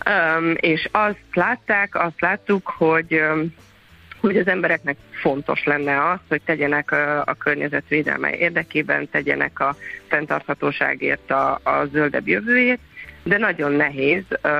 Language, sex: Hungarian, female